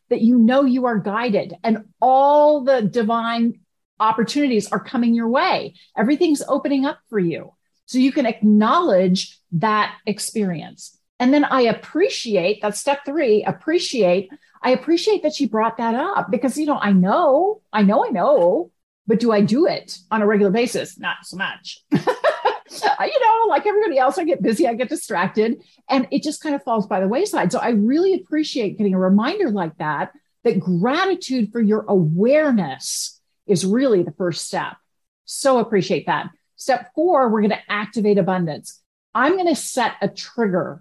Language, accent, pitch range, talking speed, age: English, American, 200-280 Hz, 170 wpm, 50-69